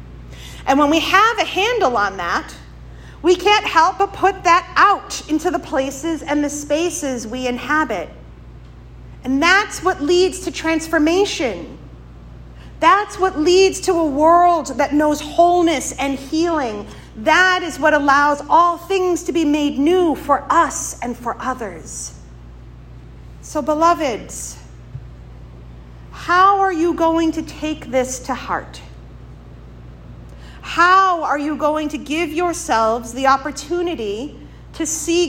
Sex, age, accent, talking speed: female, 40-59, American, 130 wpm